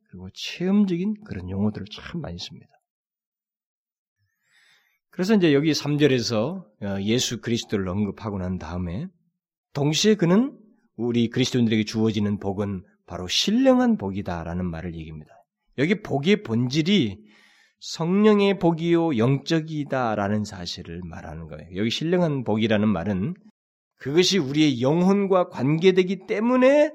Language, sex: Korean, male